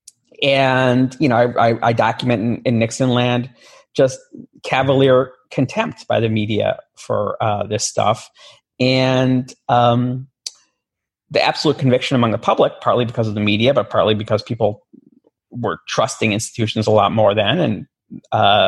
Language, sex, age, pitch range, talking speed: English, male, 30-49, 105-130 Hz, 150 wpm